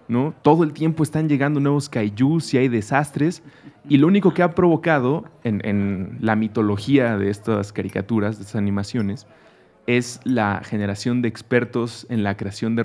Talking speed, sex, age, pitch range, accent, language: 170 wpm, male, 30-49, 105-125 Hz, Mexican, Spanish